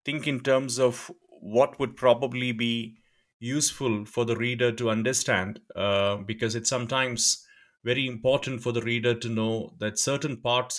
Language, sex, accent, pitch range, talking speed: English, male, Indian, 115-140 Hz, 155 wpm